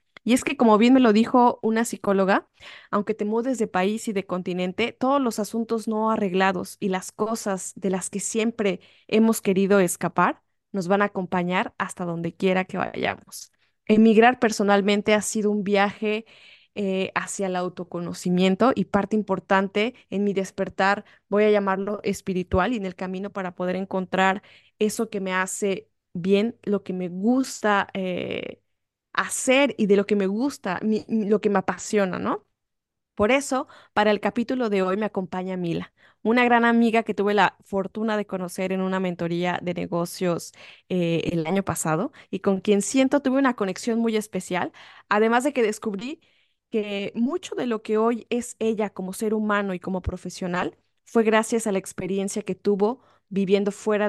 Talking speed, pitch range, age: 170 wpm, 190-220 Hz, 20-39